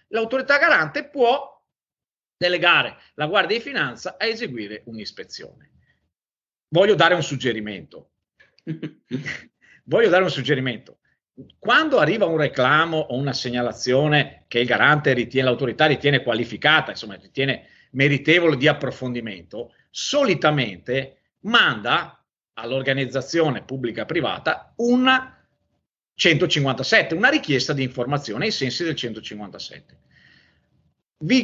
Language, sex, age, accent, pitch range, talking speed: Italian, male, 40-59, native, 125-180 Hz, 100 wpm